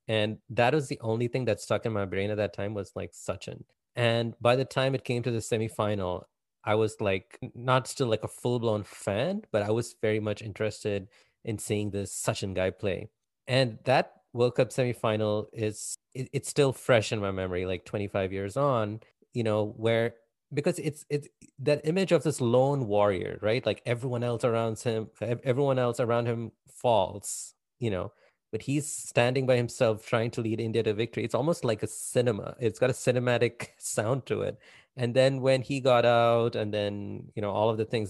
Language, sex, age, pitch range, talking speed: English, male, 30-49, 105-125 Hz, 195 wpm